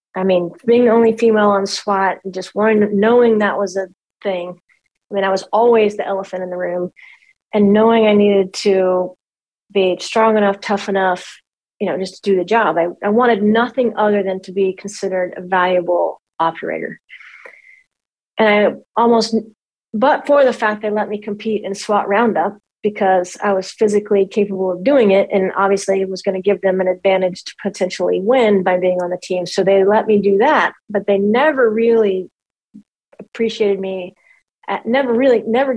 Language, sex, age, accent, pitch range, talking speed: English, female, 30-49, American, 185-220 Hz, 185 wpm